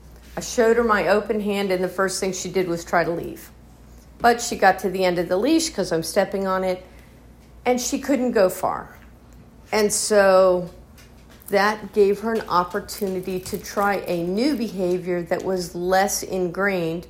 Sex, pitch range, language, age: female, 175-205 Hz, English, 50-69